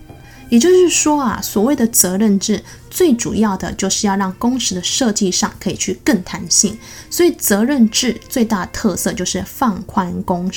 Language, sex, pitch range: Chinese, female, 195-240 Hz